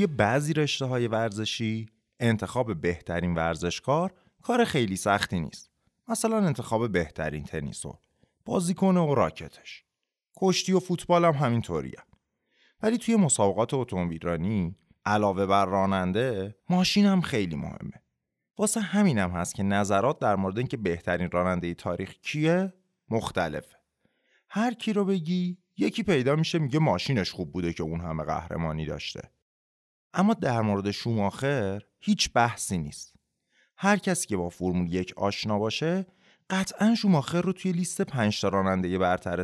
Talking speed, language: 135 wpm, Persian